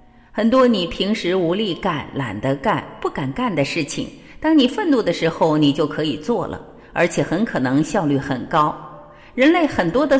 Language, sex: Chinese, female